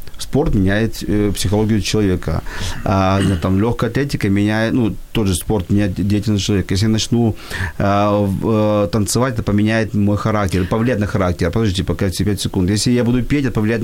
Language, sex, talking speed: Ukrainian, male, 175 wpm